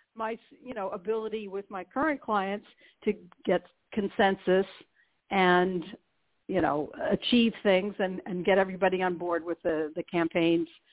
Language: English